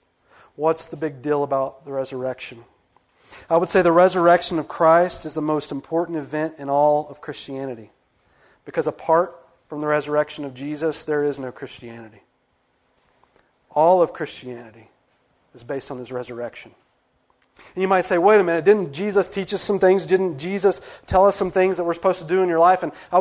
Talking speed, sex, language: 185 wpm, male, English